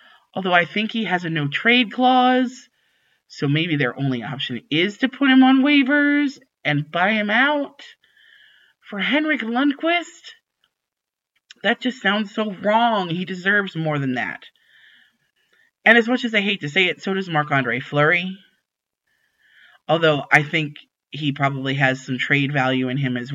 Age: 30-49